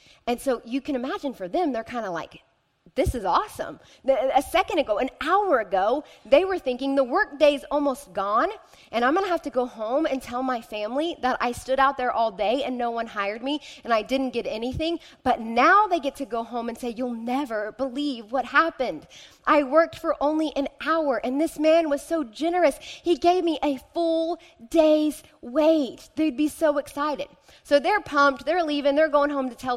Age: 20-39